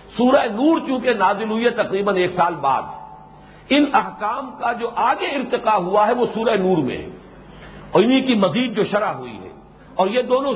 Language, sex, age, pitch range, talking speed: English, male, 50-69, 185-255 Hz, 195 wpm